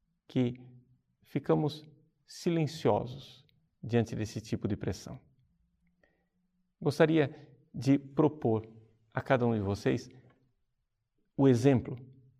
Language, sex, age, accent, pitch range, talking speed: Portuguese, male, 50-69, Brazilian, 115-145 Hz, 85 wpm